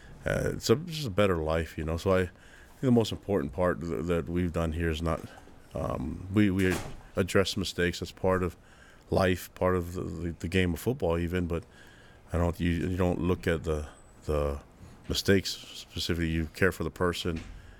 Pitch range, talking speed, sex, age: 80-90 Hz, 200 wpm, male, 30-49